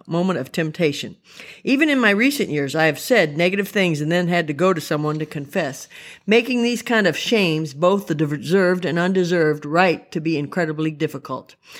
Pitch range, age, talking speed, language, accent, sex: 155-200 Hz, 50-69, 190 wpm, English, American, female